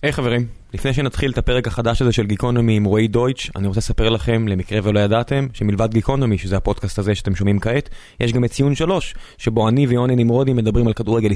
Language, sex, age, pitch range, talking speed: Hebrew, male, 20-39, 110-135 Hz, 215 wpm